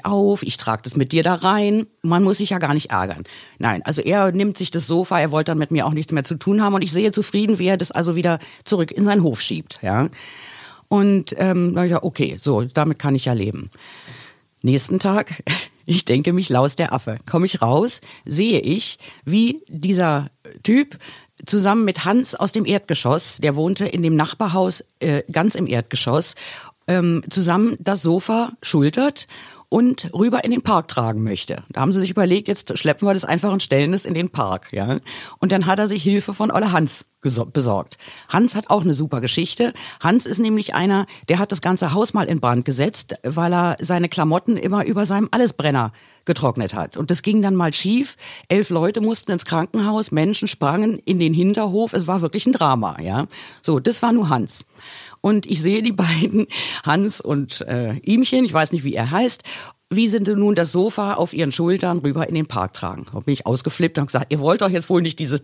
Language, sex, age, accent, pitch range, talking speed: German, female, 50-69, German, 150-205 Hz, 210 wpm